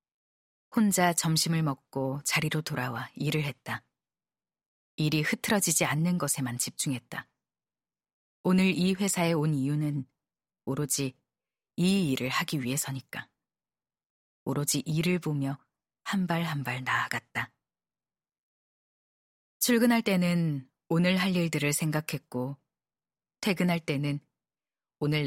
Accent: native